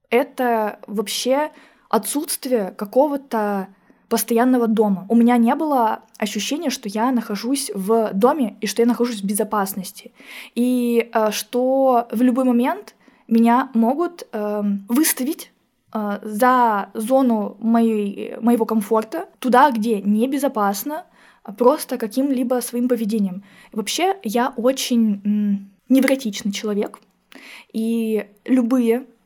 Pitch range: 215-255 Hz